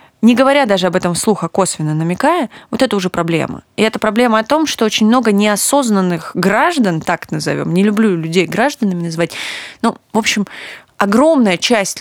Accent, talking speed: native, 170 wpm